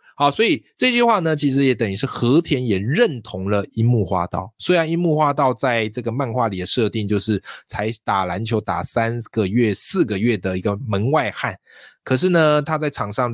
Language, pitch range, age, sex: Chinese, 105-135 Hz, 20-39, male